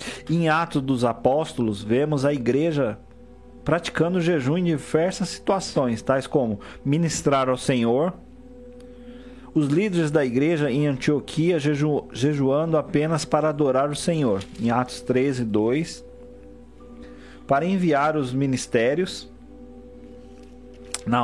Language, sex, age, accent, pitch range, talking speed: Portuguese, male, 40-59, Brazilian, 125-165 Hz, 110 wpm